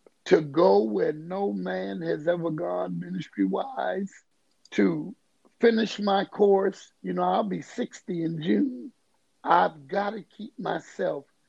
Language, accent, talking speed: English, American, 130 wpm